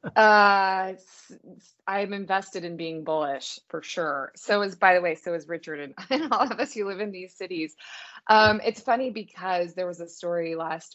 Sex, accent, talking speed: female, American, 185 wpm